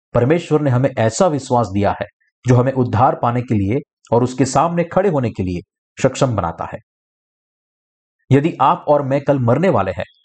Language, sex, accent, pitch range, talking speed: Hindi, male, native, 120-160 Hz, 180 wpm